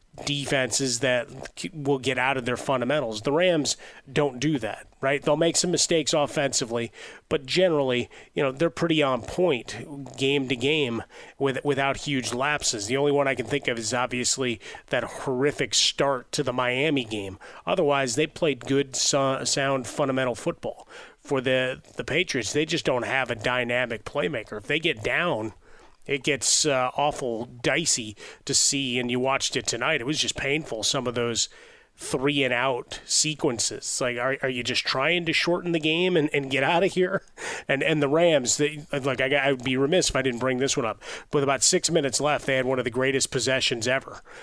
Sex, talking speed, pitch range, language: male, 195 wpm, 125-150 Hz, English